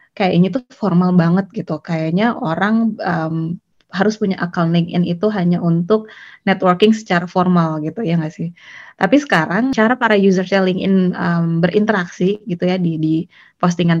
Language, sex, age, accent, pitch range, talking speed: Indonesian, female, 20-39, native, 170-215 Hz, 150 wpm